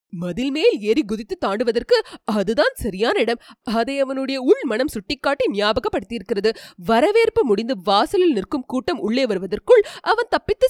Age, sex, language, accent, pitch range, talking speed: 30-49, female, English, Indian, 225-335 Hz, 130 wpm